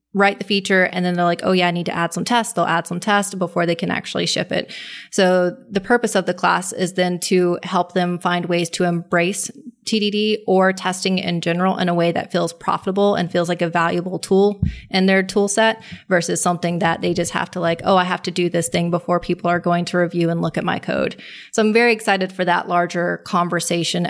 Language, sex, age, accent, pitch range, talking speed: English, female, 20-39, American, 175-200 Hz, 235 wpm